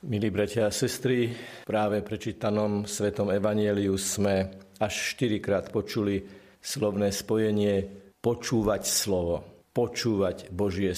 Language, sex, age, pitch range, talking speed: Slovak, male, 50-69, 100-120 Hz, 100 wpm